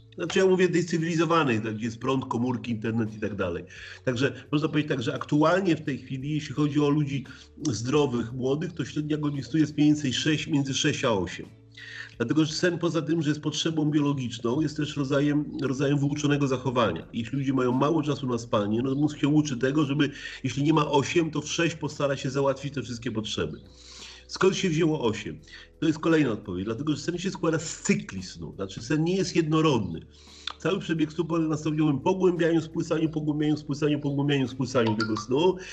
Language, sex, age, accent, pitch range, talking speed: Polish, male, 40-59, native, 130-160 Hz, 190 wpm